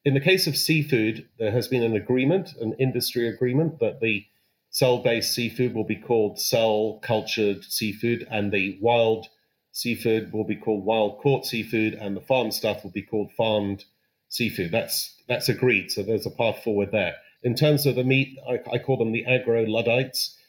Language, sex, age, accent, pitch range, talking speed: English, male, 40-59, British, 110-130 Hz, 175 wpm